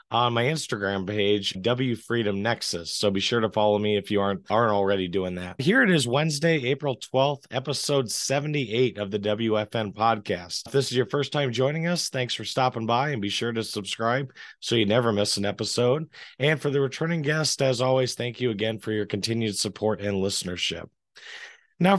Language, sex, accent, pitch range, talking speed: English, male, American, 110-135 Hz, 195 wpm